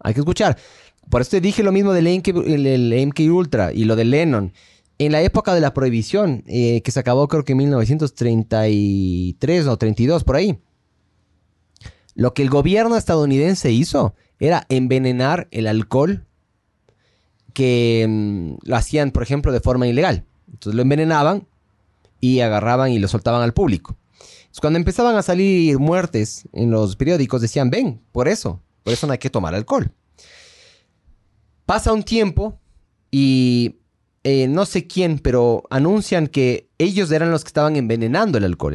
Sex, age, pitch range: male, 30-49, 110-160 Hz